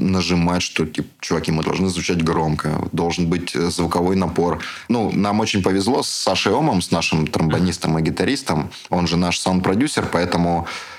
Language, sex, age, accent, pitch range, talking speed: Russian, male, 20-39, native, 85-95 Hz, 160 wpm